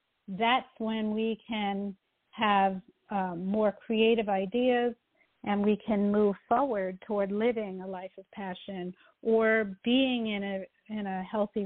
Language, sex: English, female